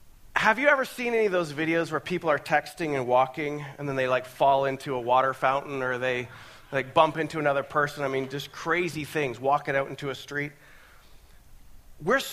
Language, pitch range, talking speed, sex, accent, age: English, 130-205 Hz, 200 wpm, male, American, 40-59